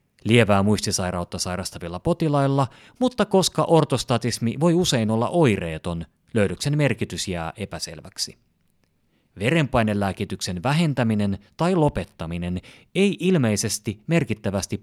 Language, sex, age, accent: Finnish, male, 30-49, native